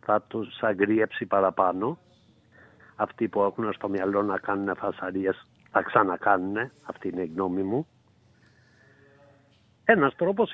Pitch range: 115-175 Hz